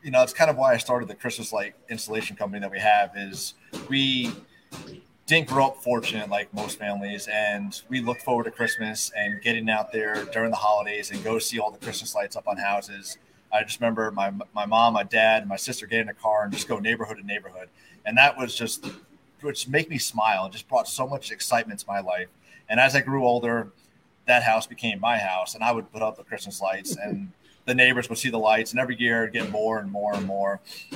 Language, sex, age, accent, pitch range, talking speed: English, male, 30-49, American, 105-130 Hz, 235 wpm